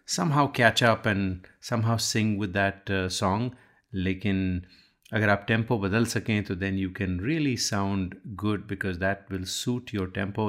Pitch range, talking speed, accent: 95-120 Hz, 165 wpm, native